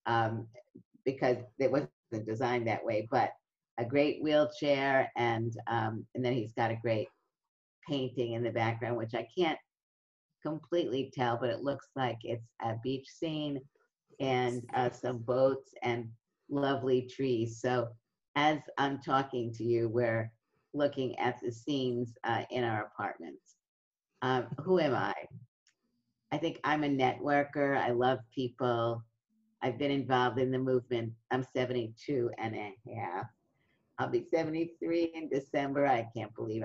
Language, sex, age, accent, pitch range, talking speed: English, female, 50-69, American, 115-130 Hz, 145 wpm